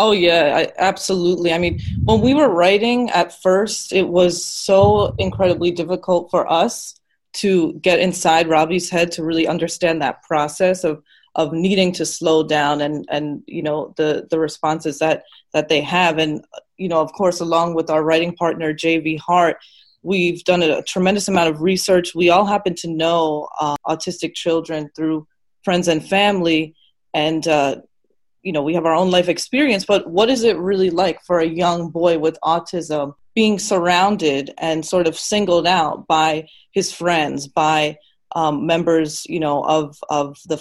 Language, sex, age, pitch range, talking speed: English, female, 20-39, 160-185 Hz, 170 wpm